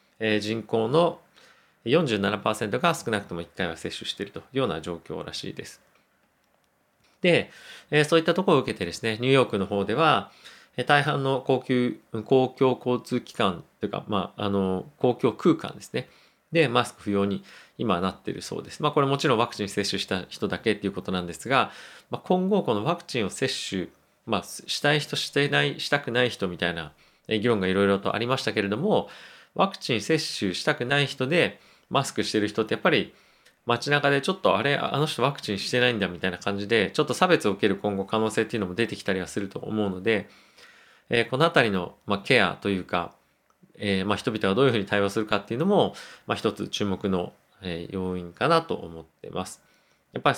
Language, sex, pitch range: Japanese, male, 100-130 Hz